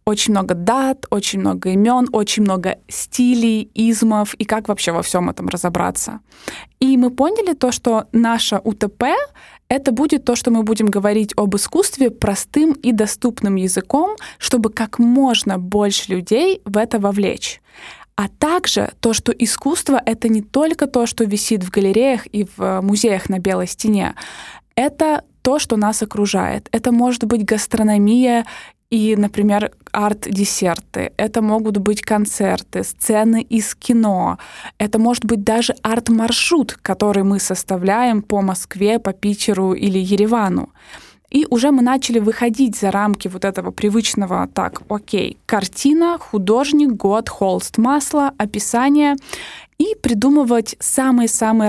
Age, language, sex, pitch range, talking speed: 20-39, Russian, female, 205-245 Hz, 135 wpm